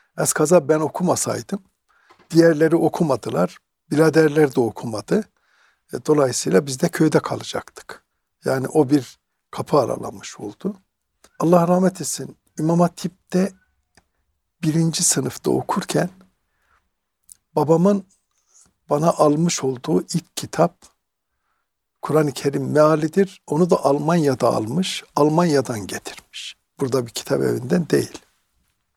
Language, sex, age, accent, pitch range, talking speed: Turkish, male, 60-79, native, 140-180 Hz, 95 wpm